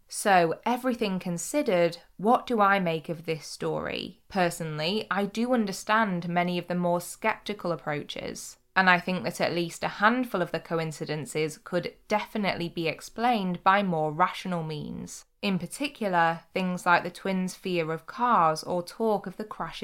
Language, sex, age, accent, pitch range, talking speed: English, female, 20-39, British, 165-200 Hz, 160 wpm